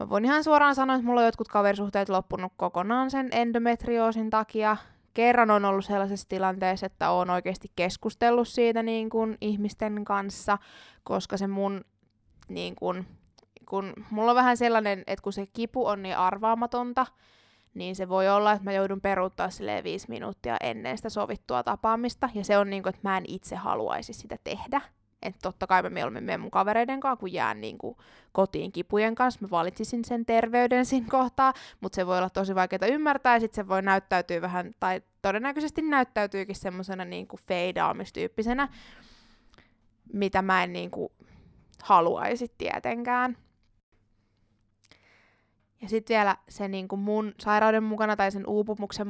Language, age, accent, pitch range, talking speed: Finnish, 20-39, native, 190-230 Hz, 155 wpm